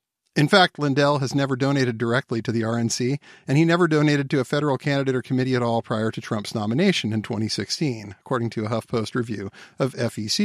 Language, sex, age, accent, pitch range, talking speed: English, male, 50-69, American, 120-145 Hz, 200 wpm